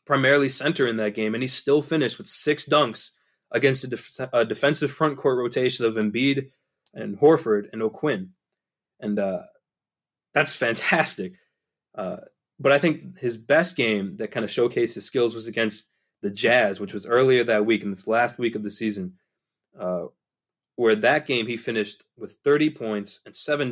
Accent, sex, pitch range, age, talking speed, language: American, male, 115-145 Hz, 20-39, 175 wpm, English